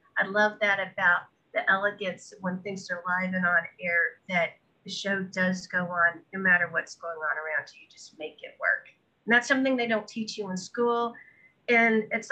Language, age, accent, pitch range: English, 50-69, American, 190-230 Hz